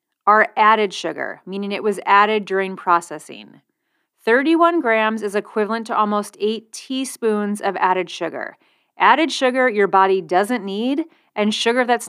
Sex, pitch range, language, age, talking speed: female, 190-245 Hz, English, 30-49, 145 wpm